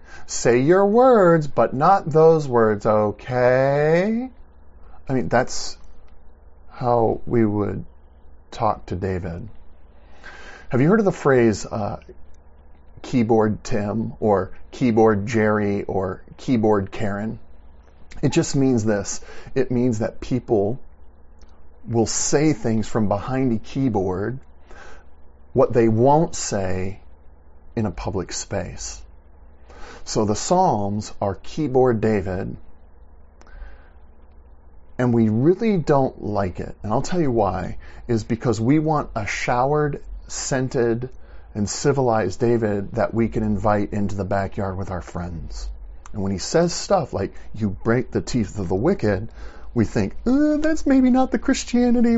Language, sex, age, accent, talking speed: English, male, 40-59, American, 130 wpm